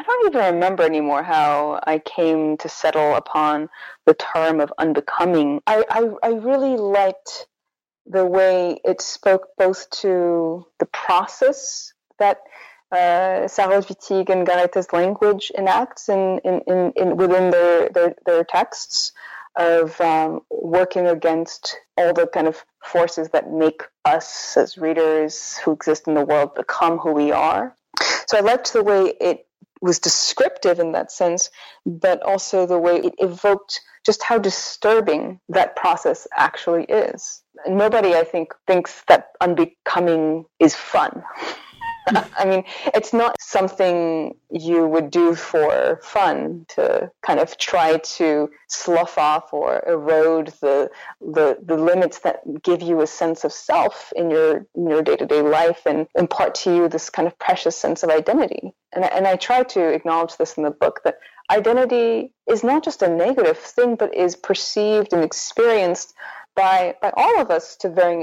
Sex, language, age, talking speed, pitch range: female, English, 20-39, 155 wpm, 160-200 Hz